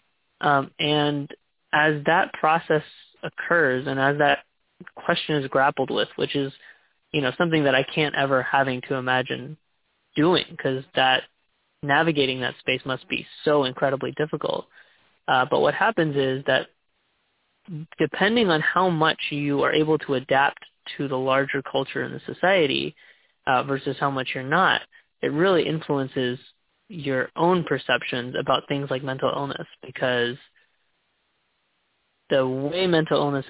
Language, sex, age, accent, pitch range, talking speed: English, male, 20-39, American, 130-155 Hz, 145 wpm